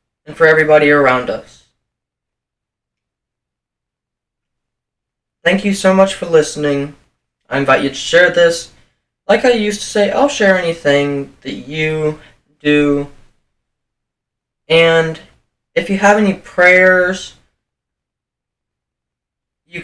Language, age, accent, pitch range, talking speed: English, 20-39, American, 140-185 Hz, 105 wpm